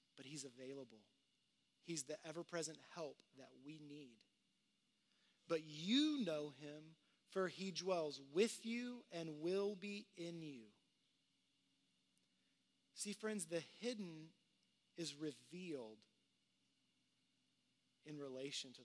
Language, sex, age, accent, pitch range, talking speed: English, male, 30-49, American, 135-185 Hz, 105 wpm